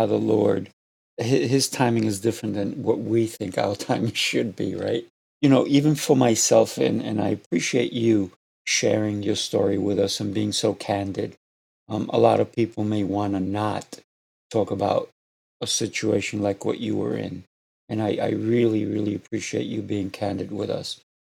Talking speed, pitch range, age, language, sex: 175 wpm, 105-115 Hz, 50-69, English, male